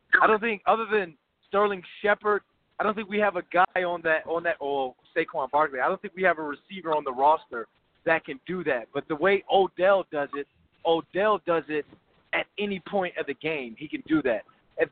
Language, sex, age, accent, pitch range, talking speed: English, male, 30-49, American, 145-180 Hz, 220 wpm